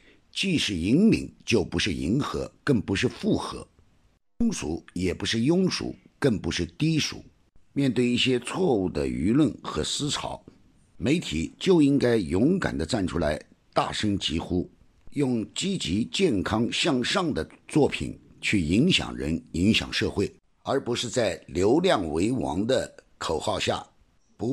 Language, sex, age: Chinese, male, 50-69